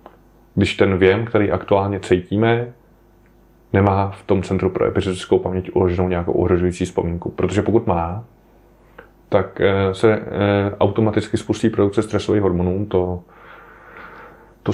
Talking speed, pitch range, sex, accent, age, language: 120 wpm, 95-115 Hz, male, native, 20-39, Czech